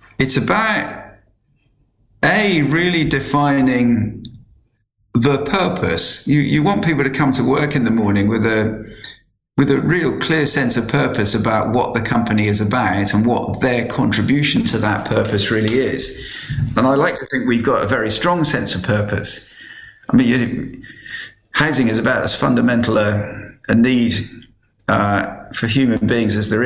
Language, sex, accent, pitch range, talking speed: English, male, British, 105-130 Hz, 165 wpm